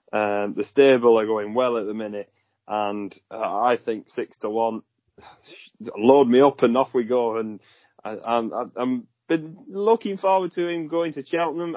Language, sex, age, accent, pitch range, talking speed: English, male, 30-49, British, 110-140 Hz, 175 wpm